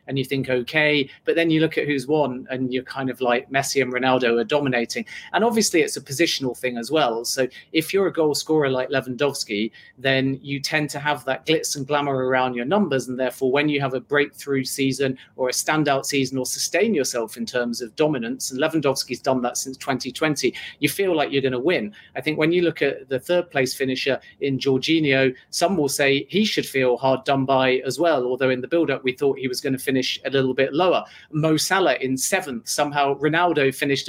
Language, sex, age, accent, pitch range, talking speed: English, male, 40-59, British, 130-155 Hz, 220 wpm